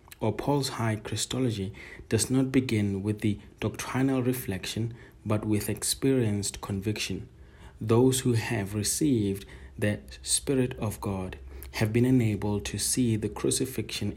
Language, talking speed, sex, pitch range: English, 125 wpm, male, 95-120 Hz